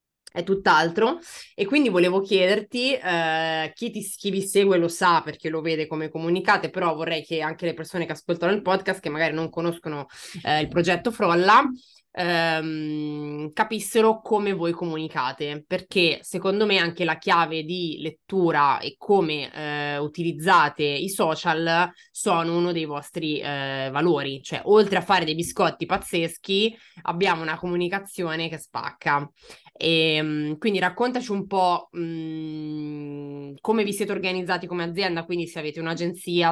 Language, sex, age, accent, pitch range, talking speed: Italian, female, 20-39, native, 160-195 Hz, 145 wpm